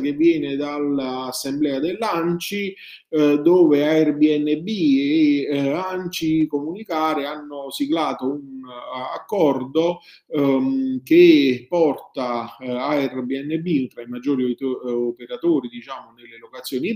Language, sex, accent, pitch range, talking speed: Italian, male, native, 125-160 Hz, 105 wpm